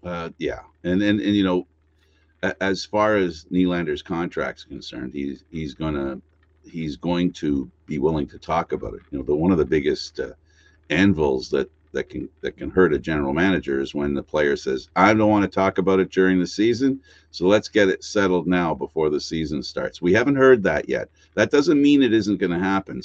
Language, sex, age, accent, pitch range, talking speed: English, male, 50-69, American, 75-95 Hz, 210 wpm